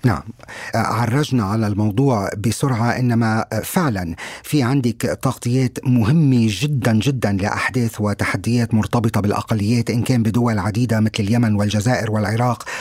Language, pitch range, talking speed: Arabic, 115-145 Hz, 115 wpm